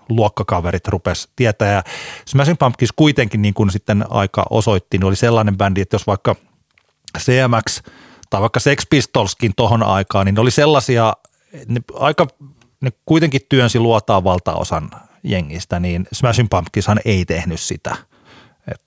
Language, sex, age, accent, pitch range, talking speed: Finnish, male, 30-49, native, 95-125 Hz, 140 wpm